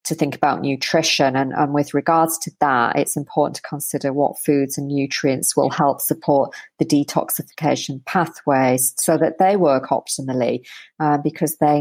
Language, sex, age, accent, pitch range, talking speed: English, female, 30-49, British, 145-165 Hz, 165 wpm